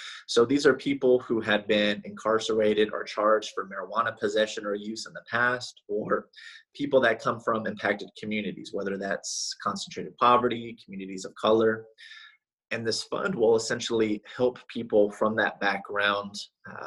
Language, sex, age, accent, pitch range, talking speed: English, male, 30-49, American, 105-130 Hz, 150 wpm